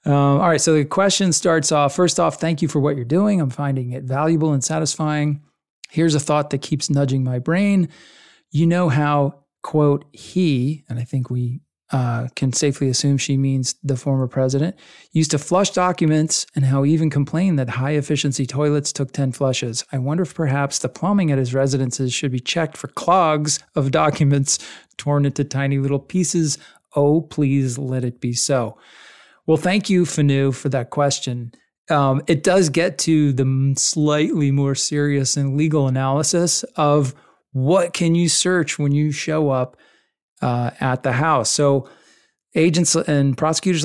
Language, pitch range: English, 135-160 Hz